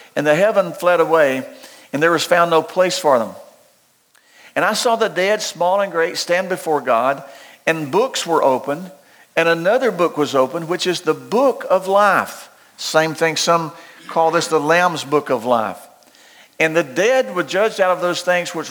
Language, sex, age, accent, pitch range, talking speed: English, male, 50-69, American, 155-190 Hz, 190 wpm